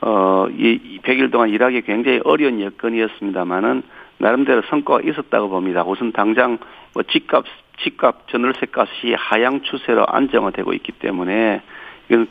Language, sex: Korean, male